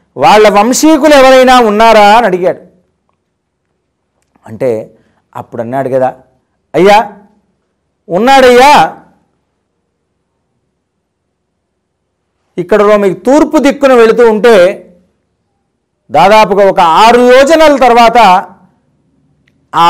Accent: native